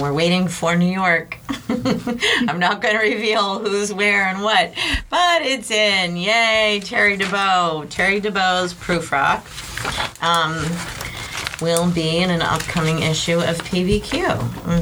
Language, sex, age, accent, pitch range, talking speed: English, female, 40-59, American, 150-205 Hz, 140 wpm